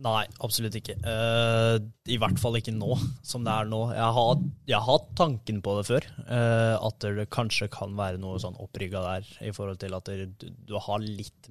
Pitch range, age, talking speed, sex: 100-115 Hz, 20-39, 215 wpm, male